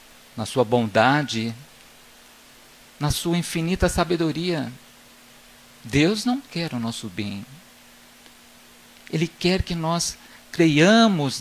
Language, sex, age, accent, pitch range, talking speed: Portuguese, male, 50-69, Brazilian, 130-180 Hz, 95 wpm